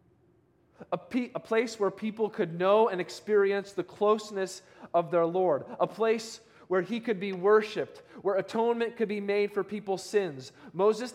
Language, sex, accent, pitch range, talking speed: English, male, American, 170-210 Hz, 165 wpm